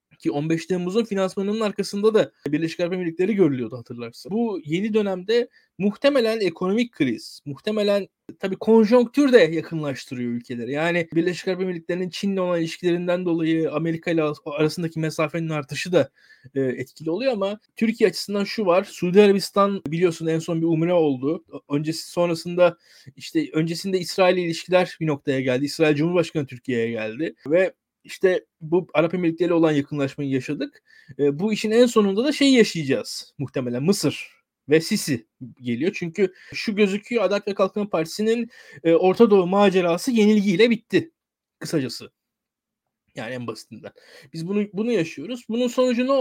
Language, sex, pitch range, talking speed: Turkish, male, 160-220 Hz, 140 wpm